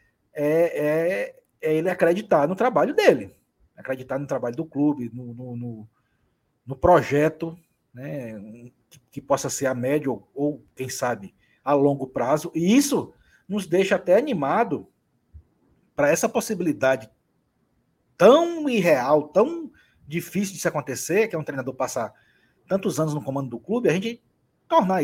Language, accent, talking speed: Portuguese, Brazilian, 150 wpm